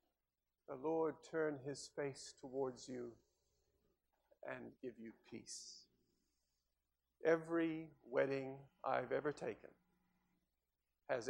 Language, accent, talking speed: English, American, 90 wpm